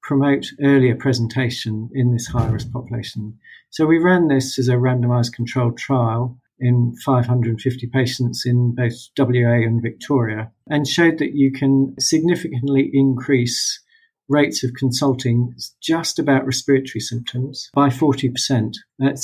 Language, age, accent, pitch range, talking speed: English, 50-69, British, 120-140 Hz, 125 wpm